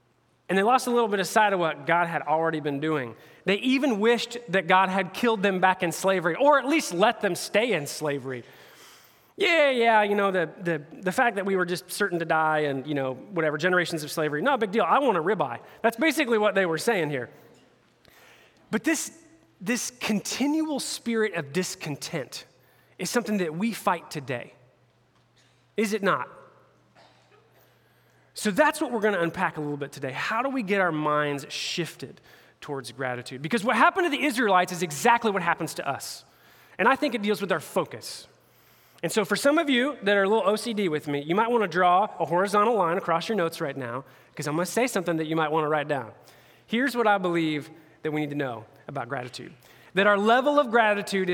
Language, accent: English, American